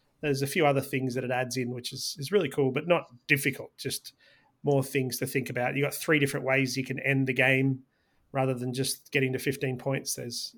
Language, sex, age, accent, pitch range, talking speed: English, male, 30-49, Australian, 130-150 Hz, 235 wpm